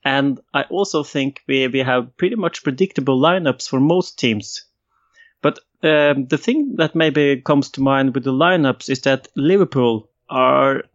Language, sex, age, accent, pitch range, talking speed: English, male, 30-49, Norwegian, 125-155 Hz, 165 wpm